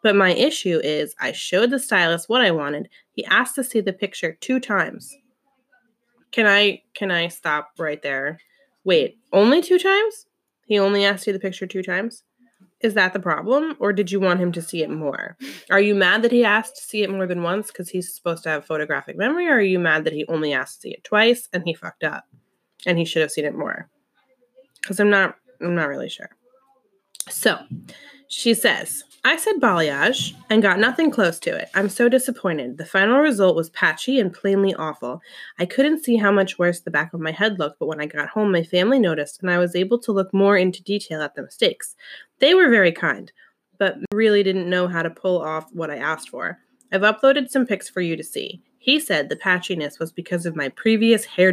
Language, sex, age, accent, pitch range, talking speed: English, female, 20-39, American, 175-240 Hz, 220 wpm